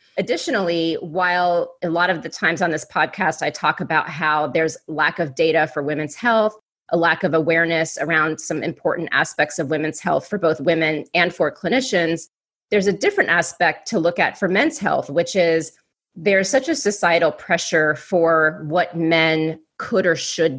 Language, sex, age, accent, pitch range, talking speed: English, female, 30-49, American, 155-180 Hz, 180 wpm